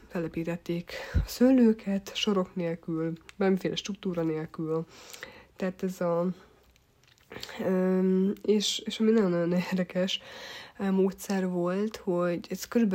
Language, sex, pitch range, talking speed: Hungarian, female, 175-195 Hz, 90 wpm